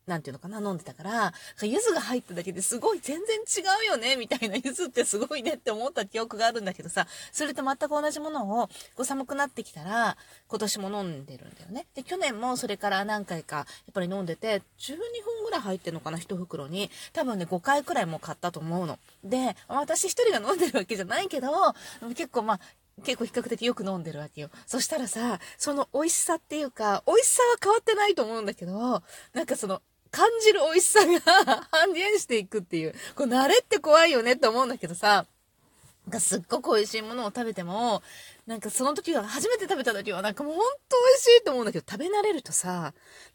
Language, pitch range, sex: Japanese, 195-305 Hz, female